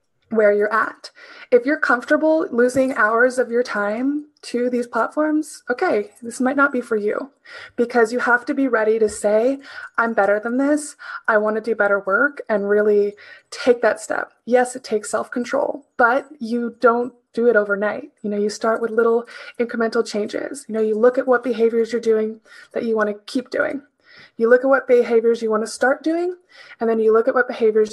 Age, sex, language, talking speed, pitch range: 20-39, female, English, 200 wpm, 225-285 Hz